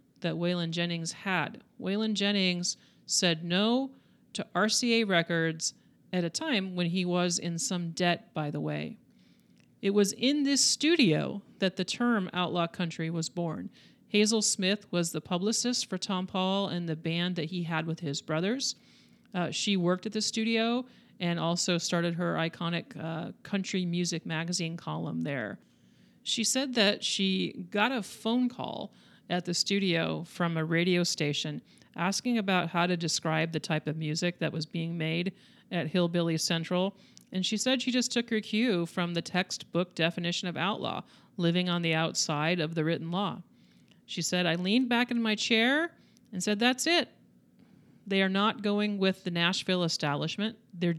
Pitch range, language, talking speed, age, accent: 165-210 Hz, English, 170 wpm, 40-59, American